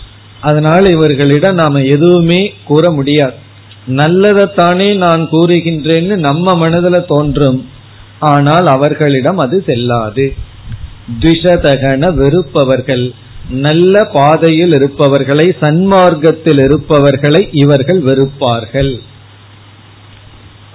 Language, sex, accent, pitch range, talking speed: Tamil, male, native, 120-165 Hz, 70 wpm